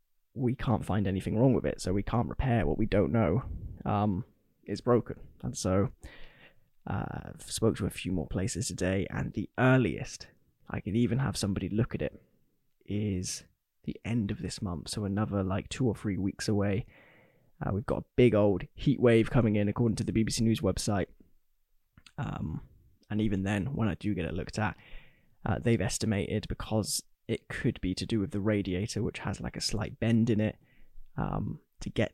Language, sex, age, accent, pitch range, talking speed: English, male, 10-29, British, 95-115 Hz, 195 wpm